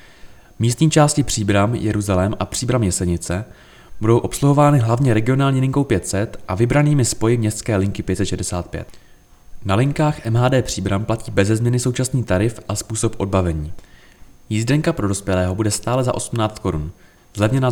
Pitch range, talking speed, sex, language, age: 95-125 Hz, 135 wpm, male, Czech, 20-39